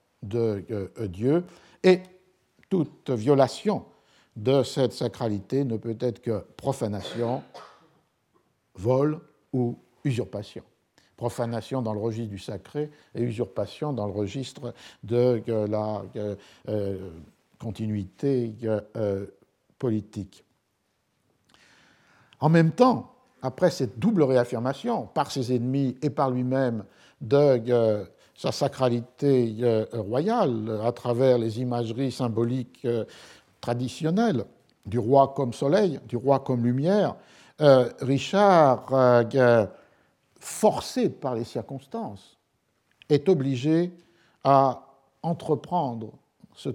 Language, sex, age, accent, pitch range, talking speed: French, male, 50-69, French, 115-140 Hz, 90 wpm